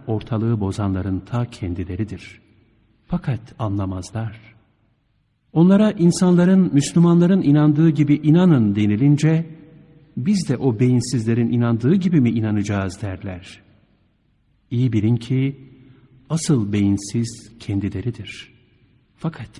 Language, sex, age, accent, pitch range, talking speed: Turkish, male, 60-79, native, 105-150 Hz, 90 wpm